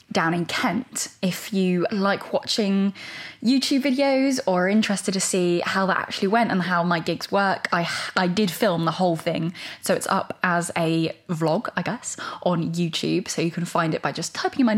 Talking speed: 200 wpm